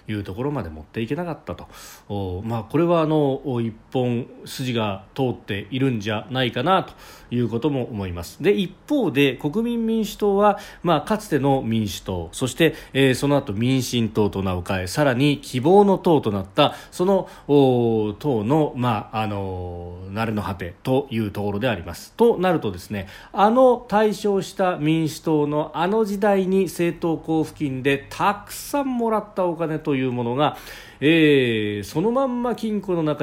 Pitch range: 110-185 Hz